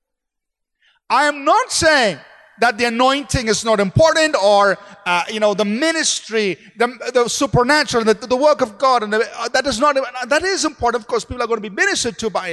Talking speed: 205 wpm